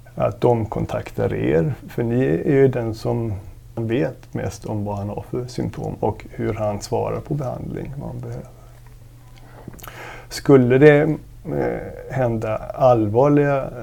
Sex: male